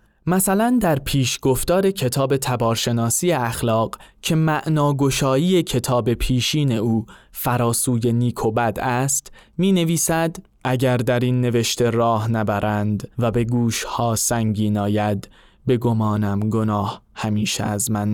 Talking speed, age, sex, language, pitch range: 120 wpm, 20-39, male, Persian, 110-125 Hz